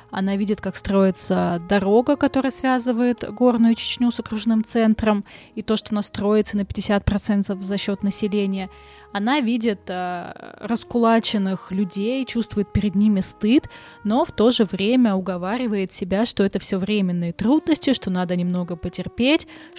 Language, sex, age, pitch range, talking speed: Russian, female, 20-39, 190-240 Hz, 145 wpm